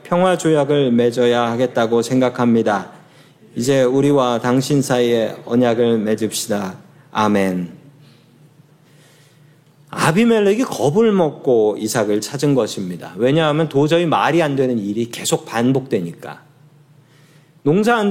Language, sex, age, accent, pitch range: Korean, male, 40-59, native, 130-210 Hz